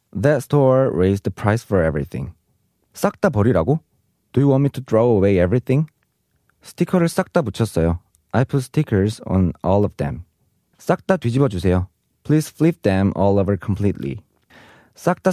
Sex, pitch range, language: male, 95-145 Hz, Korean